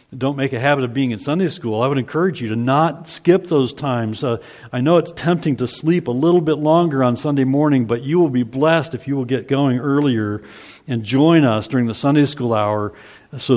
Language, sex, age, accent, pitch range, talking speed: English, male, 50-69, American, 110-145 Hz, 230 wpm